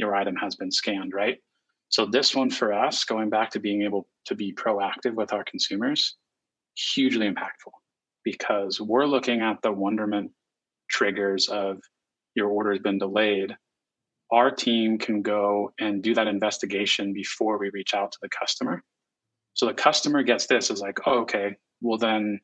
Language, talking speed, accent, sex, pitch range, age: English, 165 wpm, American, male, 100-115 Hz, 30-49